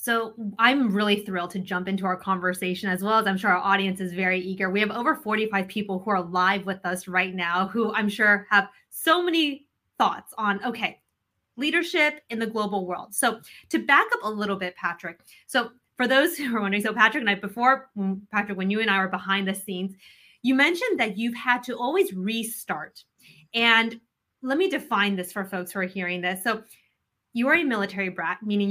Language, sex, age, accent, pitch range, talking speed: English, female, 20-39, American, 190-245 Hz, 205 wpm